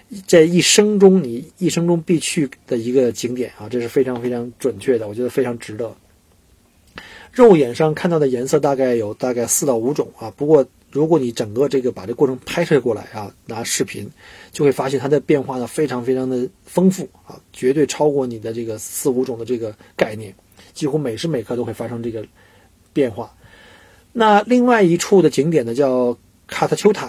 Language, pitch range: Chinese, 120-185 Hz